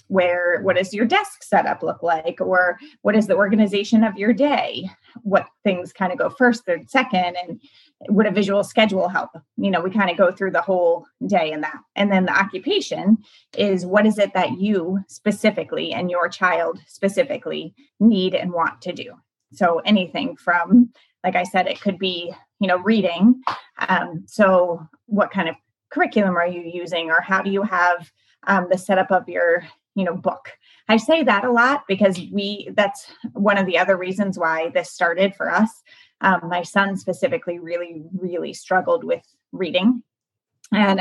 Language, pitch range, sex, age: English, 175-225 Hz, female, 20-39